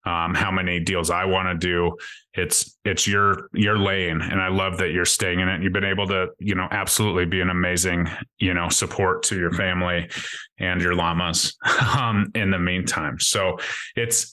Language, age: English, 30-49